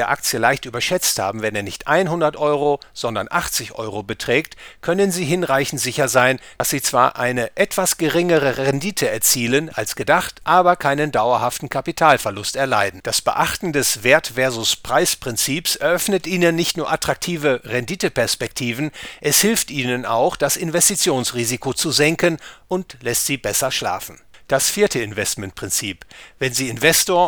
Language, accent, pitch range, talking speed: English, German, 125-170 Hz, 145 wpm